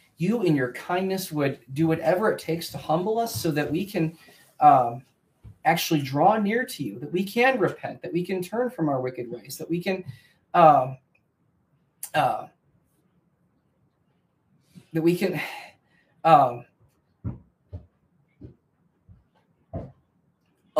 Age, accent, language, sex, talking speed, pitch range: 30-49, American, English, male, 125 wpm, 135-180 Hz